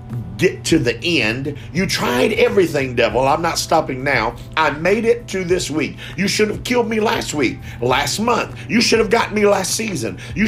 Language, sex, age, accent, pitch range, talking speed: English, male, 50-69, American, 120-165 Hz, 200 wpm